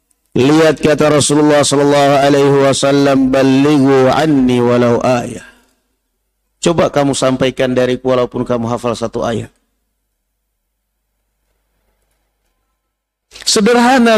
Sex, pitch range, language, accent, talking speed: male, 125-160 Hz, Indonesian, native, 85 wpm